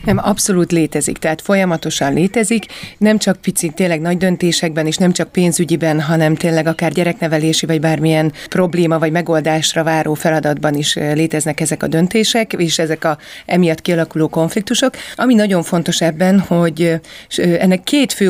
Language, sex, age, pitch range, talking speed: Hungarian, female, 30-49, 160-180 Hz, 150 wpm